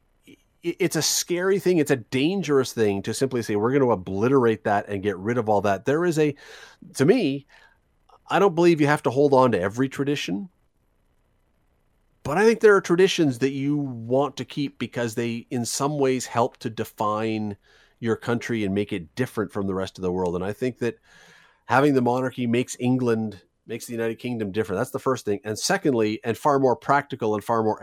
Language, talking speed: English, 205 wpm